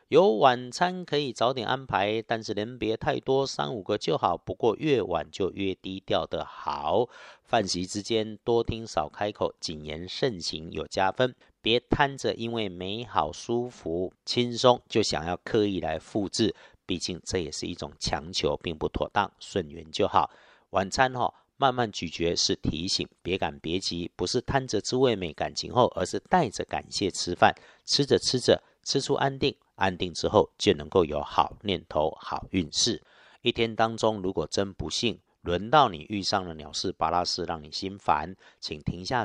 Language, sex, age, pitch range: Chinese, male, 50-69, 90-120 Hz